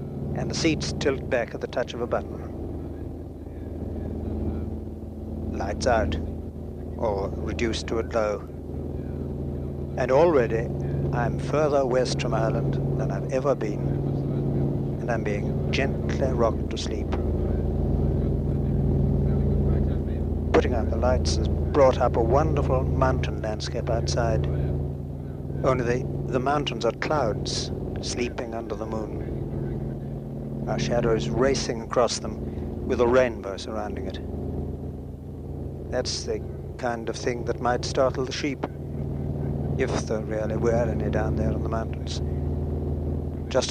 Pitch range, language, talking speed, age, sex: 70-95 Hz, English, 125 wpm, 60-79, male